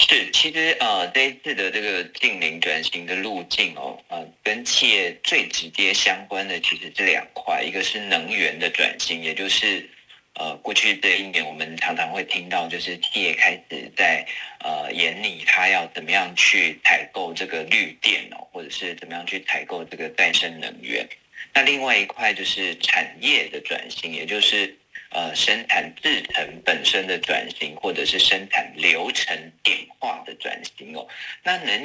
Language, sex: Chinese, male